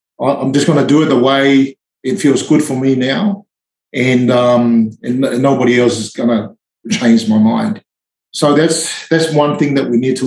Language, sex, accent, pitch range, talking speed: English, male, Australian, 120-145 Hz, 200 wpm